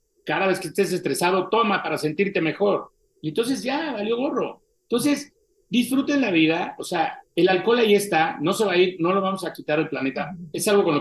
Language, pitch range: Spanish, 160-215 Hz